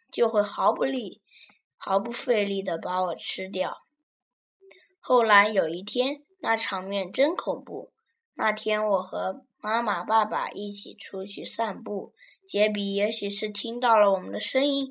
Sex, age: female, 10-29